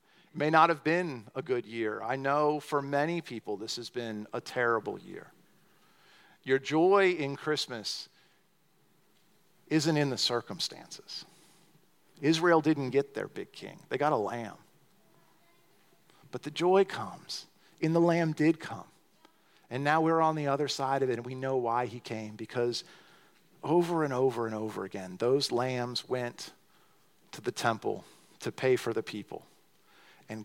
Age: 50-69